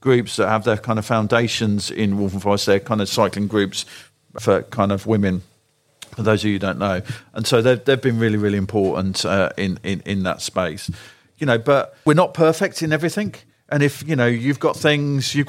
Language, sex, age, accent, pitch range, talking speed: English, male, 50-69, British, 110-140 Hz, 220 wpm